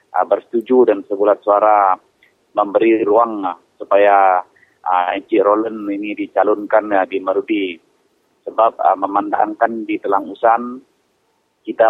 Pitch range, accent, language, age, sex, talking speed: 100-115 Hz, Indonesian, English, 30-49, male, 110 wpm